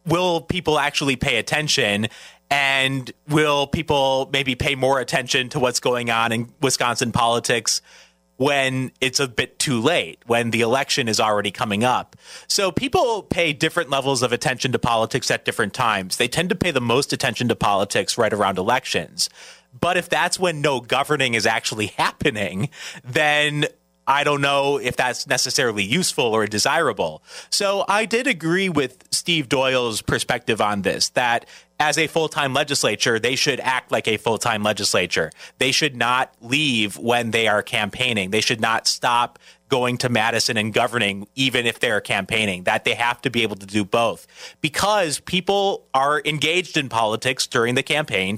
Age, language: 30-49, English